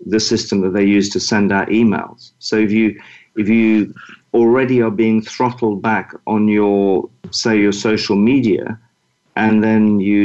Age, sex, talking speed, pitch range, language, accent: 40-59, male, 165 wpm, 100-115 Hz, English, British